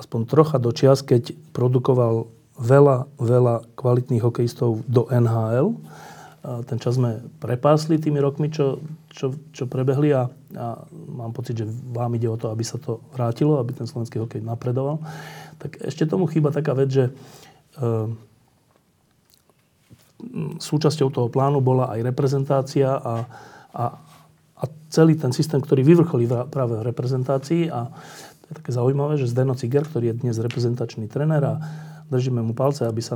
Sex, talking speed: male, 155 wpm